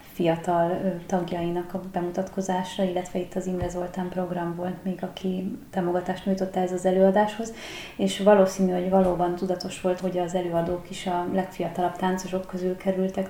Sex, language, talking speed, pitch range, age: female, Hungarian, 145 wpm, 175-195 Hz, 30-49